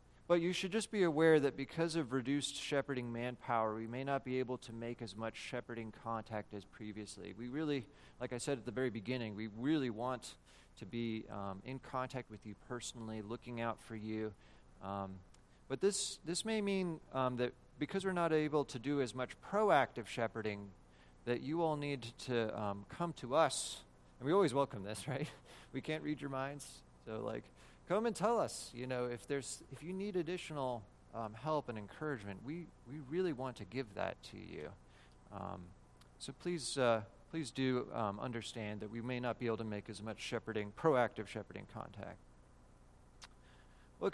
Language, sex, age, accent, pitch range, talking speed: English, male, 30-49, American, 110-155 Hz, 185 wpm